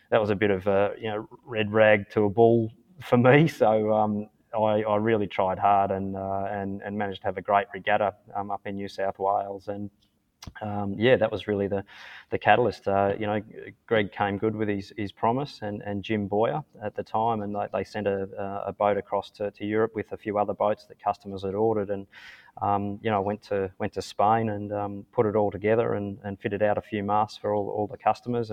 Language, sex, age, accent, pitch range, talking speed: English, male, 20-39, Australian, 100-105 Hz, 235 wpm